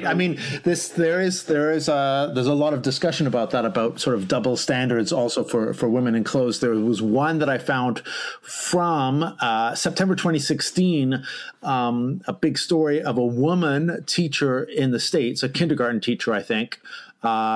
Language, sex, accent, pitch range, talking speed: English, male, American, 120-155 Hz, 190 wpm